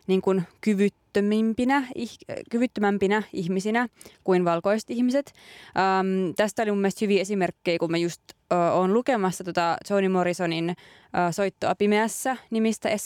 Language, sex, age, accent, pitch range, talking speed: Finnish, female, 20-39, native, 175-210 Hz, 110 wpm